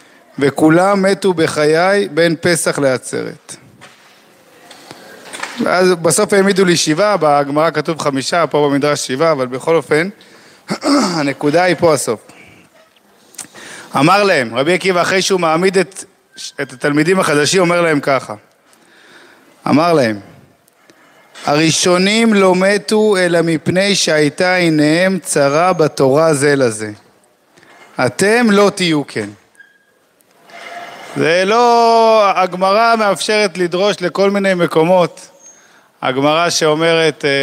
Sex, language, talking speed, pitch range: male, Hebrew, 105 wpm, 150-190 Hz